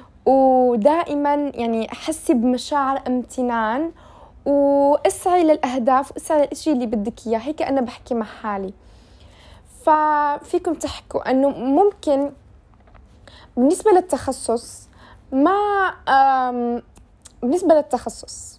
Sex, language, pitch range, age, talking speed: female, Arabic, 220-285 Hz, 20-39, 85 wpm